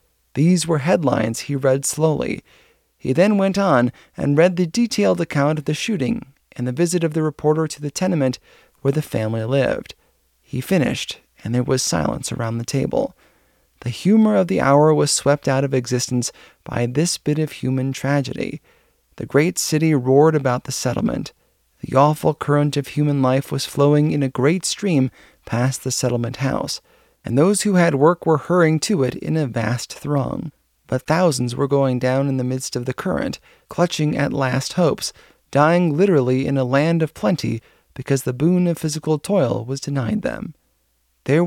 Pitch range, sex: 130-165 Hz, male